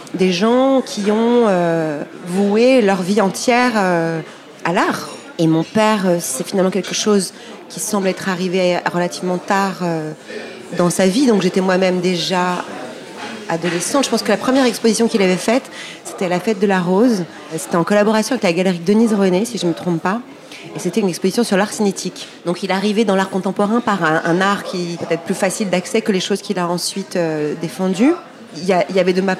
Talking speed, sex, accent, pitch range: 210 wpm, female, French, 175-215 Hz